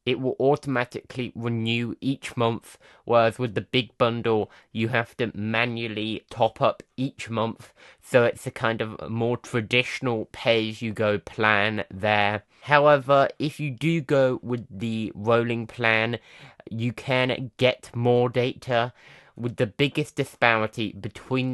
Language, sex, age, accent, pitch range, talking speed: English, male, 20-39, British, 110-130 Hz, 135 wpm